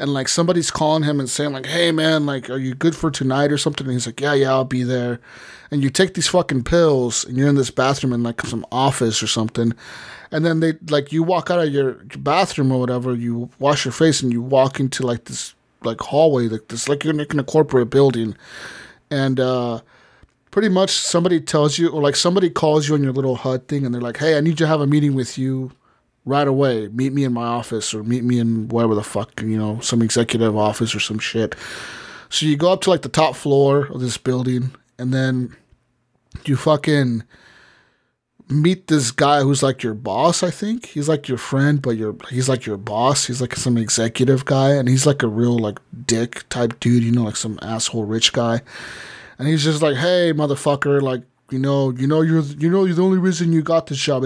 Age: 30-49